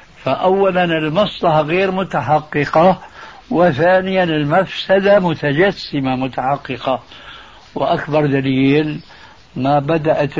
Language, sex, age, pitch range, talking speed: Arabic, male, 60-79, 135-160 Hz, 70 wpm